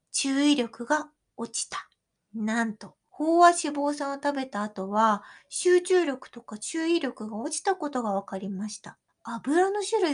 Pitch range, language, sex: 220-315 Hz, Japanese, female